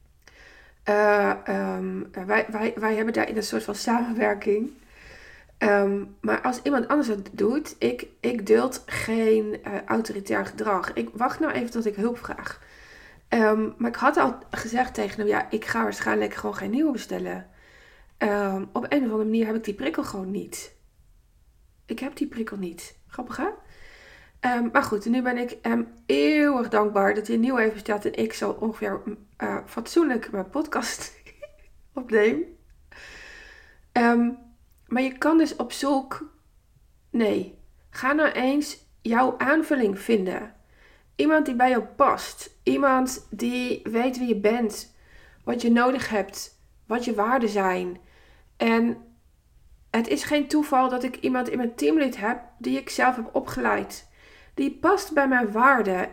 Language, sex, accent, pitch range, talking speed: Dutch, female, Dutch, 205-265 Hz, 160 wpm